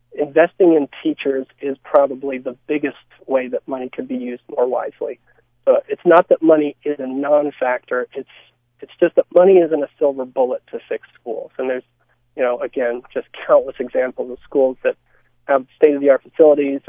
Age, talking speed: 40-59, 175 wpm